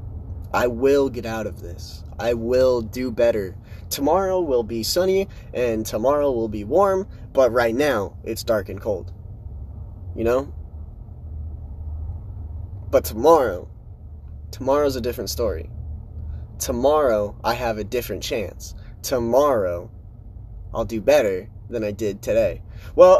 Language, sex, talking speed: English, male, 125 wpm